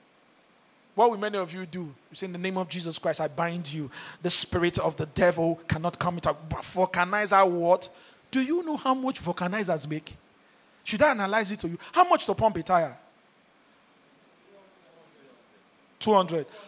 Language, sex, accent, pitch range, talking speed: English, male, Nigerian, 185-285 Hz, 170 wpm